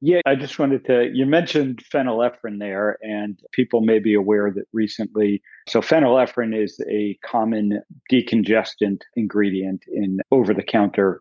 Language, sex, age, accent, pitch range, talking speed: English, male, 50-69, American, 105-125 Hz, 135 wpm